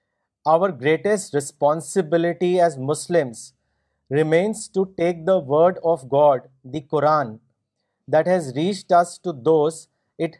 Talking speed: 120 wpm